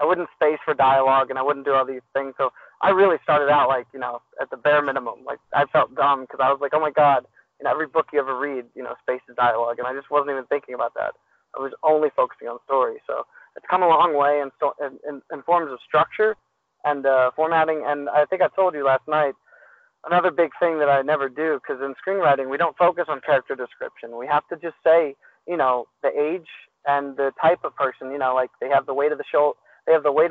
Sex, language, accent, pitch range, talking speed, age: male, English, American, 135-160 Hz, 250 wpm, 20-39